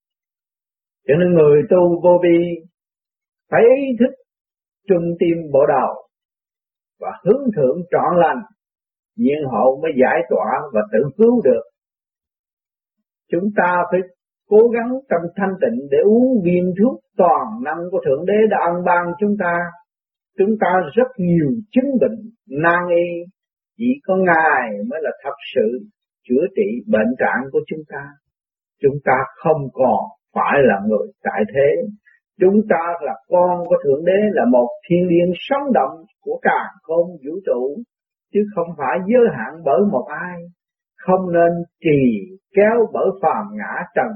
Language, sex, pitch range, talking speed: Vietnamese, male, 170-240 Hz, 150 wpm